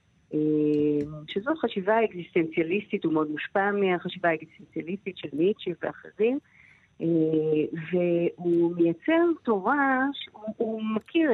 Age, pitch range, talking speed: 50-69, 165-230 Hz, 90 wpm